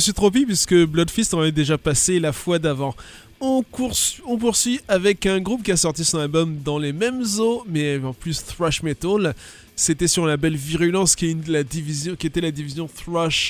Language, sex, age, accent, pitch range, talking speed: French, male, 20-39, French, 140-175 Hz, 220 wpm